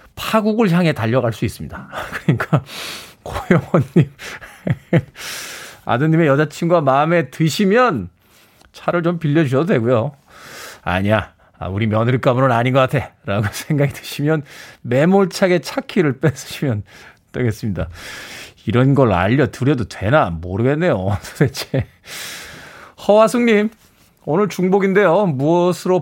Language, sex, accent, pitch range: Korean, male, native, 120-185 Hz